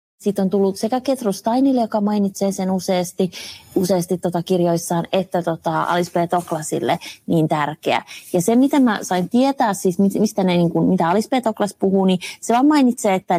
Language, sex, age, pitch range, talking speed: Finnish, female, 30-49, 150-195 Hz, 180 wpm